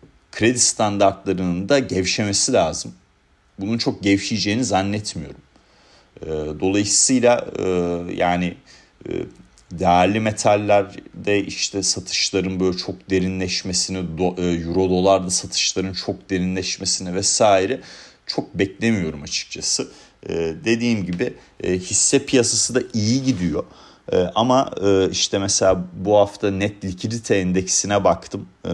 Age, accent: 40-59, native